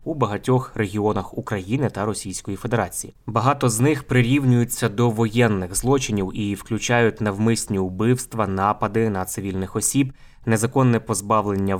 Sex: male